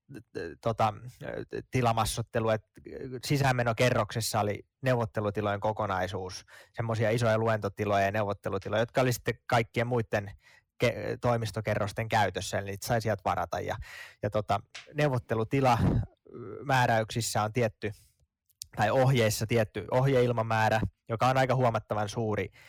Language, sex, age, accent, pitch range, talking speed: Finnish, male, 20-39, native, 105-120 Hz, 105 wpm